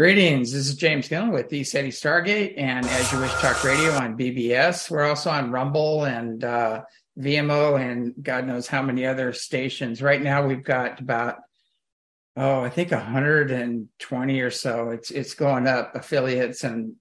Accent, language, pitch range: American, English, 130-160 Hz